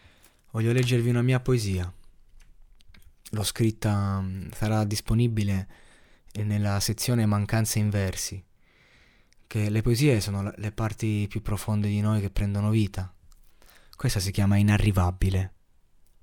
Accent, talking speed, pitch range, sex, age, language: native, 115 wpm, 95-110 Hz, male, 20-39, Italian